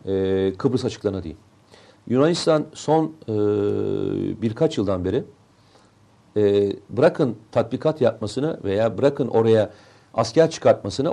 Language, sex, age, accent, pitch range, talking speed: Turkish, male, 40-59, native, 105-140 Hz, 100 wpm